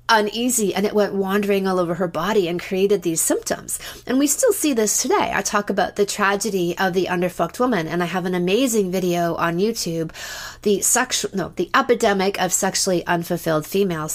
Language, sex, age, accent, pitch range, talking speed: English, female, 30-49, American, 175-220 Hz, 190 wpm